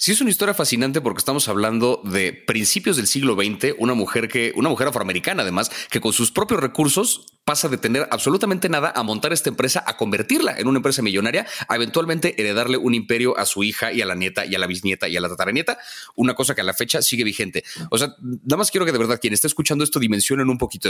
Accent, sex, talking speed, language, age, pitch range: Mexican, male, 240 wpm, Spanish, 30-49, 110-145 Hz